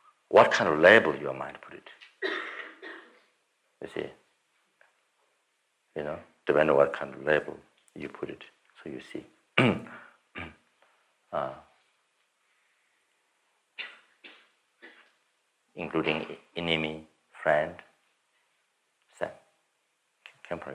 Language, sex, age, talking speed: English, male, 60-79, 90 wpm